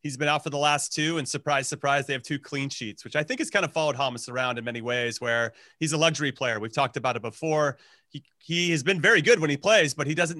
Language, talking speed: English, 285 wpm